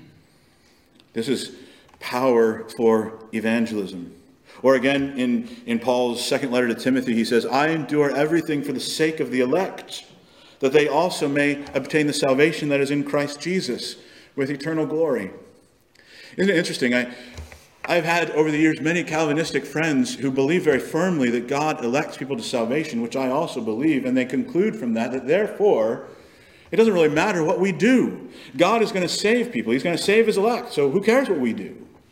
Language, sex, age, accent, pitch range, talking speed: English, male, 50-69, American, 140-215 Hz, 180 wpm